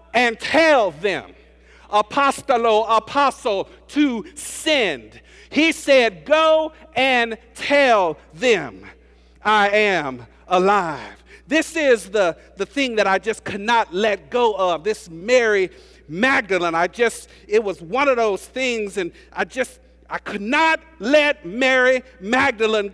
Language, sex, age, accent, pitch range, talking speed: English, male, 50-69, American, 215-275 Hz, 130 wpm